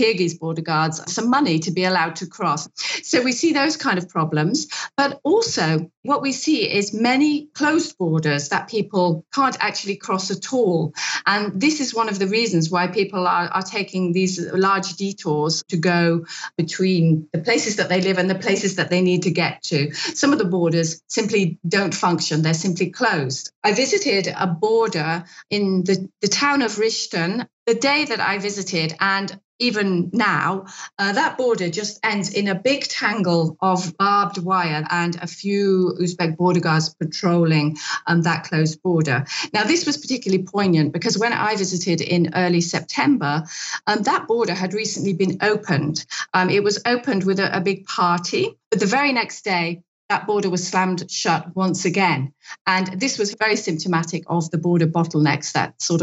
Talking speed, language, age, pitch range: 180 wpm, English, 40-59, 170-215 Hz